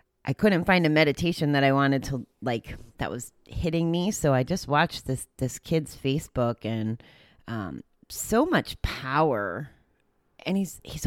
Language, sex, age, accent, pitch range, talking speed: English, female, 30-49, American, 120-170 Hz, 165 wpm